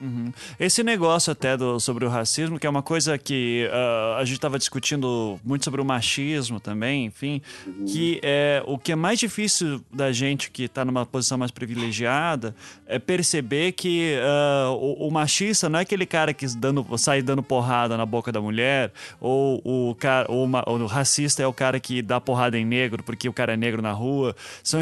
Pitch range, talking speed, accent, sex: 125-160 Hz, 175 wpm, Brazilian, male